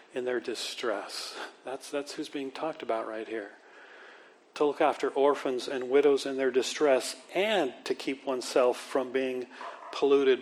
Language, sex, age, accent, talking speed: English, male, 40-59, American, 155 wpm